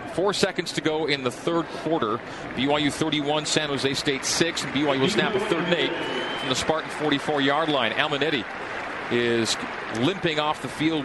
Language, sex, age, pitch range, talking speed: English, male, 40-59, 135-160 Hz, 180 wpm